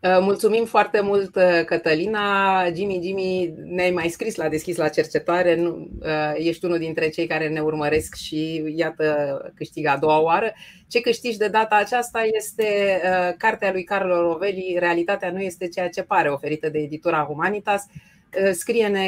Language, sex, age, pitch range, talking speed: Romanian, female, 30-49, 165-210 Hz, 160 wpm